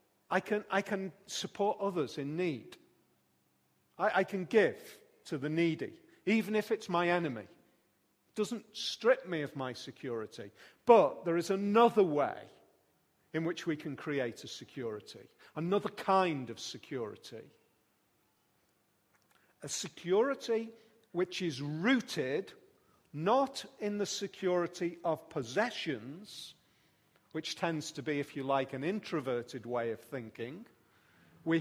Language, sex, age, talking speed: English, male, 40-59, 125 wpm